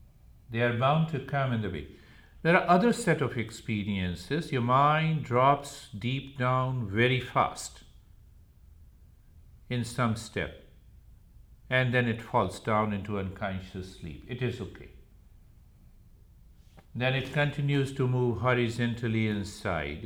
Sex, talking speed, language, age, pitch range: male, 125 wpm, English, 50-69, 100-125 Hz